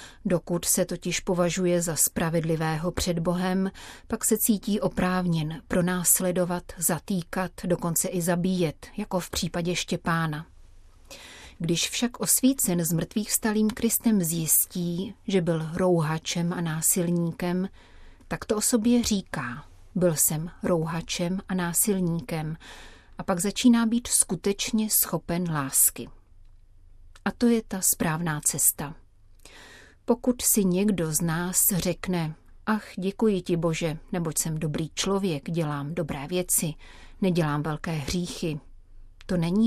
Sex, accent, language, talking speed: female, native, Czech, 120 wpm